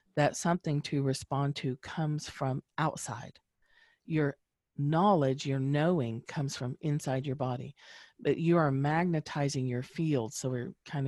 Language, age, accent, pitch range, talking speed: English, 40-59, American, 130-150 Hz, 140 wpm